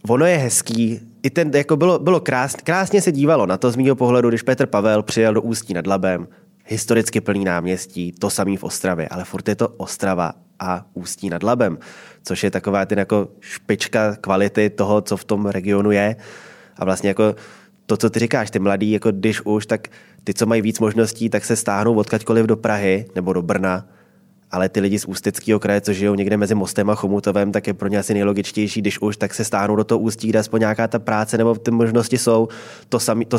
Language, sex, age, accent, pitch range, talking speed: Czech, male, 20-39, native, 105-120 Hz, 210 wpm